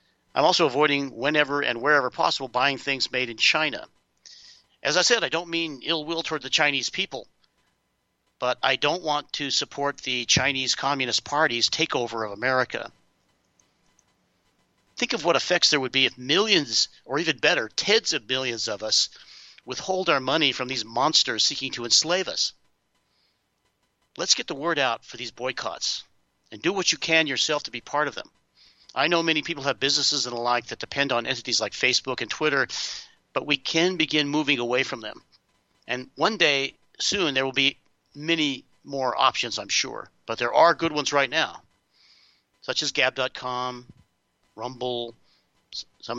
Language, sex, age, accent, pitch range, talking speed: English, male, 50-69, American, 125-155 Hz, 170 wpm